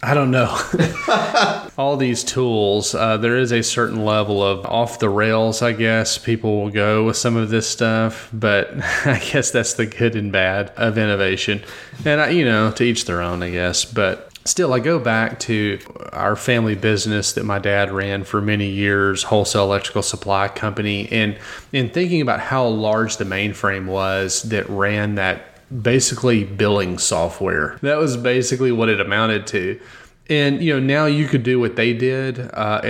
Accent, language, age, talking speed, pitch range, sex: American, English, 30-49, 175 wpm, 100-120 Hz, male